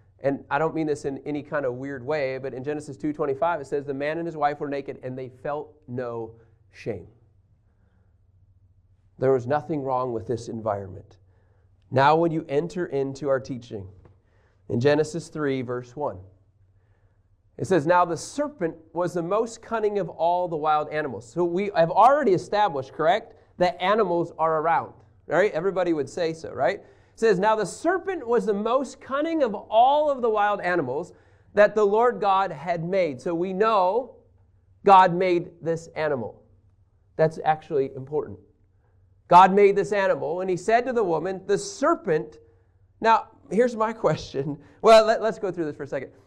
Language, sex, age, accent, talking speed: English, male, 30-49, American, 170 wpm